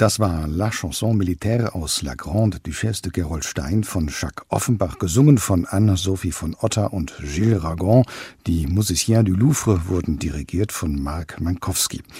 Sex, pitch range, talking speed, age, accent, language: male, 85-110 Hz, 160 wpm, 60-79, German, German